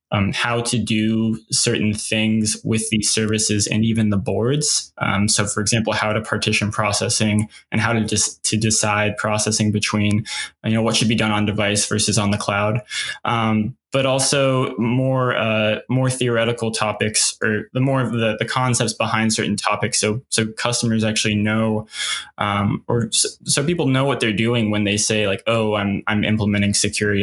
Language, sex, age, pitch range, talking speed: English, male, 10-29, 105-120 Hz, 175 wpm